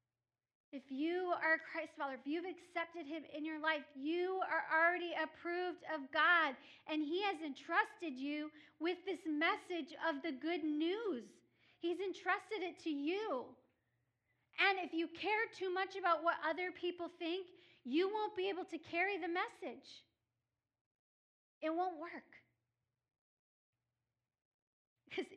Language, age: English, 40-59